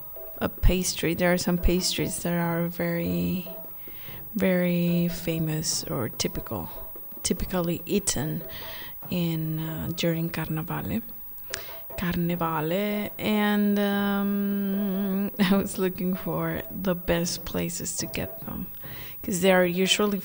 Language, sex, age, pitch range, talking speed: English, female, 20-39, 165-200 Hz, 105 wpm